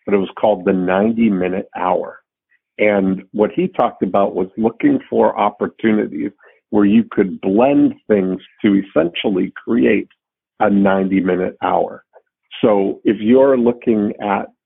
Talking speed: 130 wpm